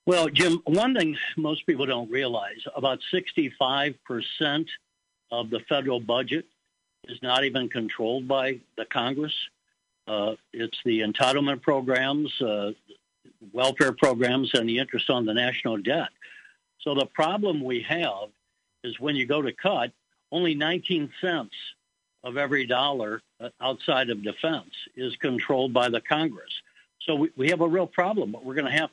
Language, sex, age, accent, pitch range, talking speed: English, male, 60-79, American, 125-155 Hz, 150 wpm